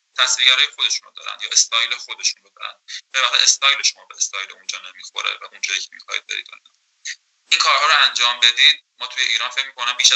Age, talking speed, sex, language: 20-39, 190 wpm, male, Persian